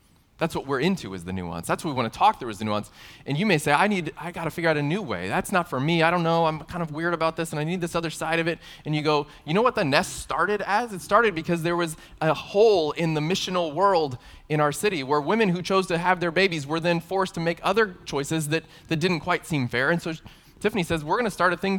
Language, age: English, 20-39